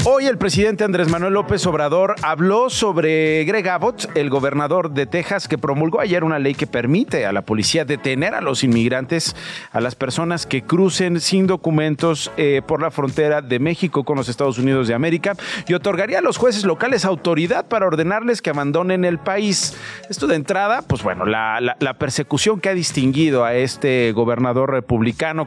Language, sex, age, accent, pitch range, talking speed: Spanish, male, 40-59, Mexican, 140-190 Hz, 180 wpm